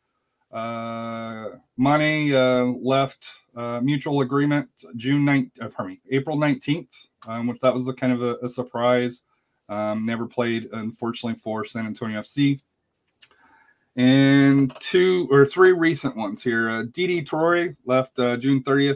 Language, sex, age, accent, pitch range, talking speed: English, male, 30-49, American, 120-145 Hz, 140 wpm